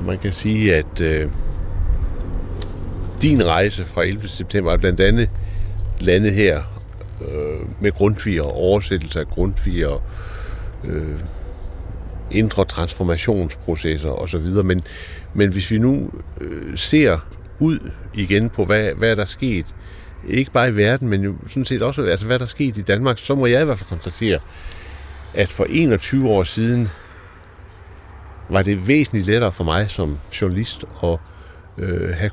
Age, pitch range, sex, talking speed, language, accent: 60-79, 85-105 Hz, male, 145 wpm, Danish, native